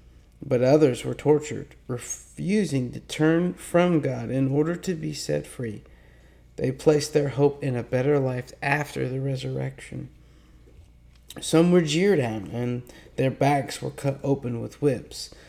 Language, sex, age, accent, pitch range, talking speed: English, male, 40-59, American, 120-150 Hz, 145 wpm